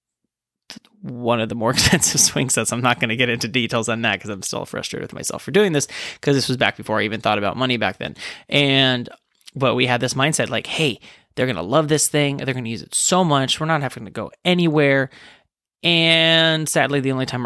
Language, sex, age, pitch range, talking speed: English, male, 20-39, 120-150 Hz, 235 wpm